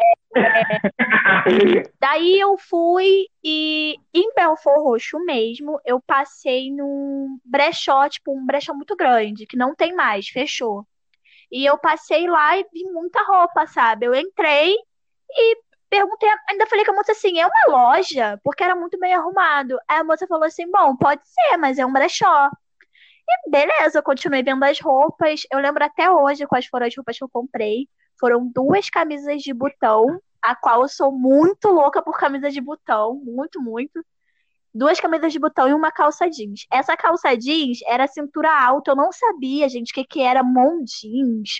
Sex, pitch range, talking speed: female, 255-335 Hz, 175 wpm